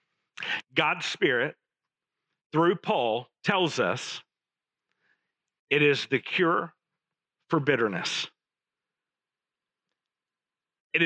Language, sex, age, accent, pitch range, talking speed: English, male, 50-69, American, 135-165 Hz, 70 wpm